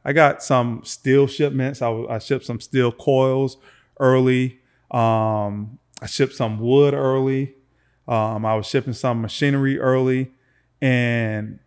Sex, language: male, English